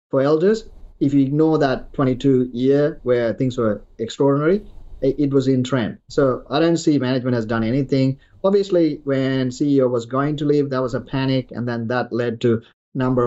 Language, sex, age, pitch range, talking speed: English, male, 30-49, 120-140 Hz, 185 wpm